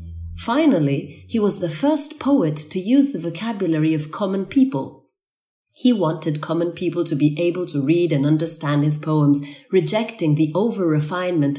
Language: Italian